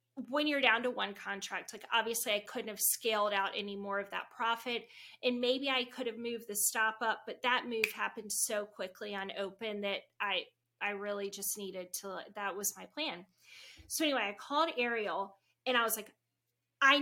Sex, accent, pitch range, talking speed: female, American, 205-255 Hz, 200 wpm